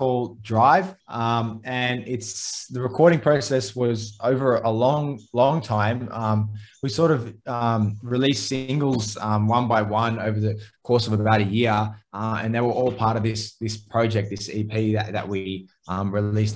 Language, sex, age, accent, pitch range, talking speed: English, male, 20-39, Australian, 105-115 Hz, 175 wpm